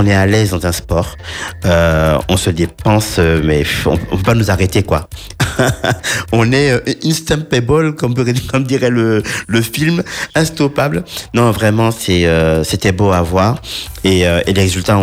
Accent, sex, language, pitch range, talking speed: French, male, French, 85-105 Hz, 160 wpm